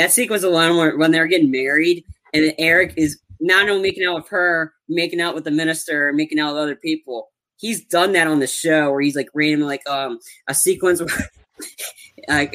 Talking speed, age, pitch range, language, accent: 205 wpm, 20-39, 140-180 Hz, English, American